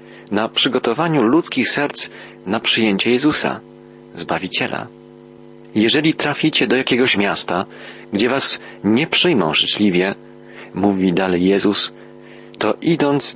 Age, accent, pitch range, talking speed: 40-59, native, 90-115 Hz, 105 wpm